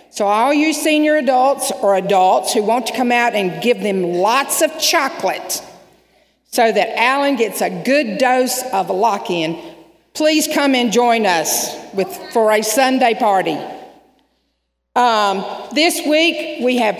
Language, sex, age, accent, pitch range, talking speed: English, female, 50-69, American, 210-260 Hz, 145 wpm